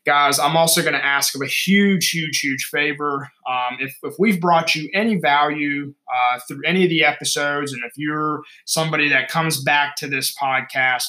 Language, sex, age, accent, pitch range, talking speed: English, male, 20-39, American, 125-150 Hz, 195 wpm